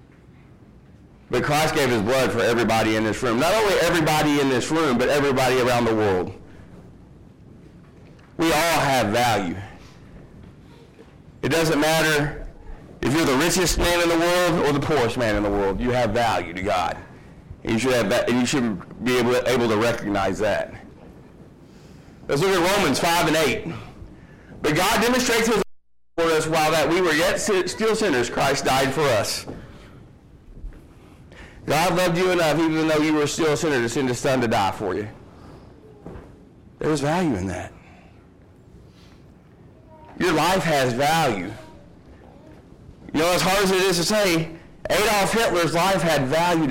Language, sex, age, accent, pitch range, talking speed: English, male, 40-59, American, 125-175 Hz, 165 wpm